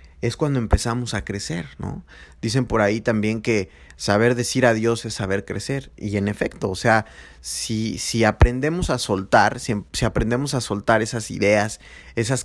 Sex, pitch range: male, 100-135 Hz